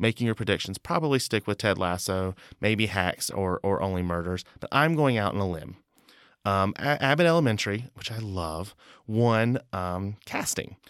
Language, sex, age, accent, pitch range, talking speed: English, male, 30-49, American, 90-115 Hz, 165 wpm